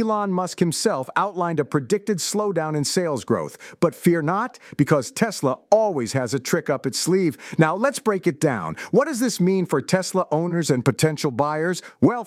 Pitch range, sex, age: 150-250 Hz, male, 50-69